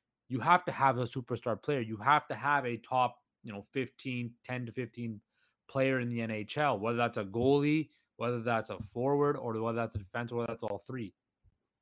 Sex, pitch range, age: male, 115-145 Hz, 20-39